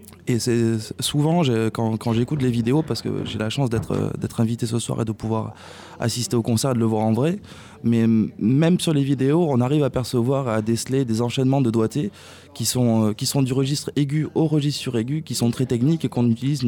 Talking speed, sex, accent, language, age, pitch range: 225 wpm, male, French, French, 20-39, 115-140 Hz